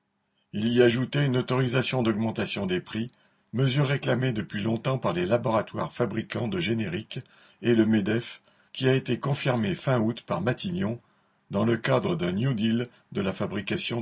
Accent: French